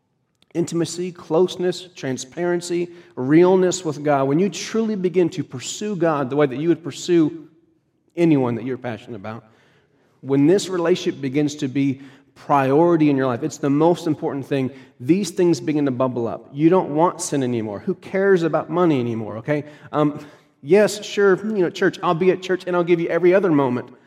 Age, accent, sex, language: 40-59, American, male, English